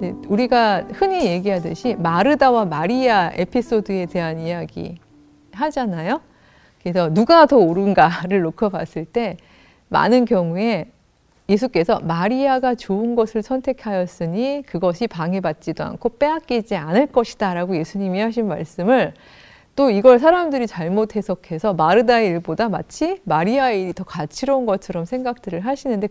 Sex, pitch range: female, 185-260 Hz